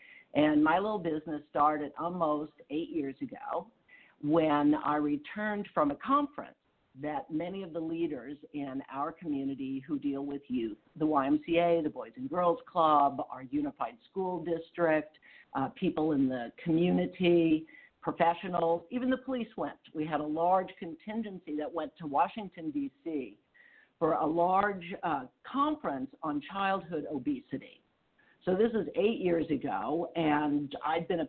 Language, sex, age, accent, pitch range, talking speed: English, female, 50-69, American, 145-205 Hz, 145 wpm